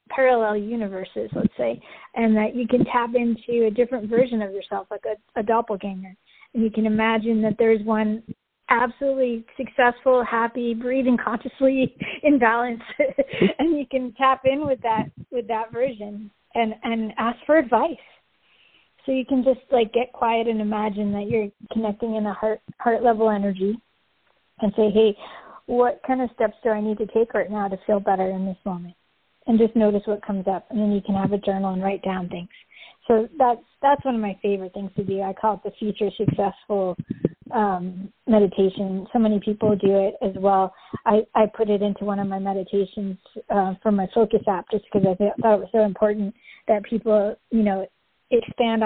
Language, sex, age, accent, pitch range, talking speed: English, female, 40-59, American, 200-235 Hz, 190 wpm